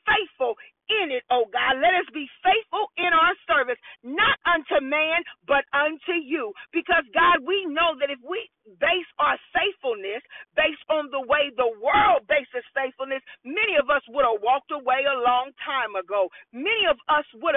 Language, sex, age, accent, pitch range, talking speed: English, female, 40-59, American, 260-350 Hz, 180 wpm